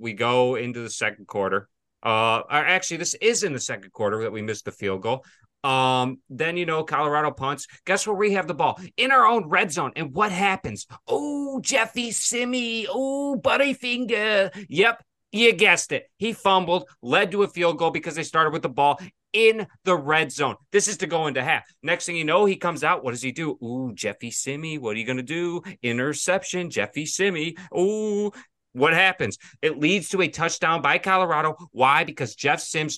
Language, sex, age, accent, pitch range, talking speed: English, male, 30-49, American, 130-185 Hz, 200 wpm